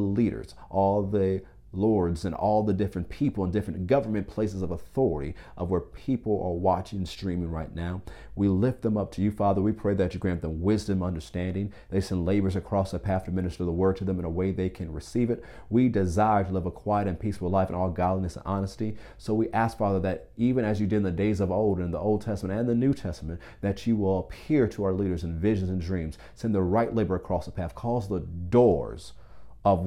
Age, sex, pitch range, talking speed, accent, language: 40-59, male, 90-105 Hz, 235 wpm, American, English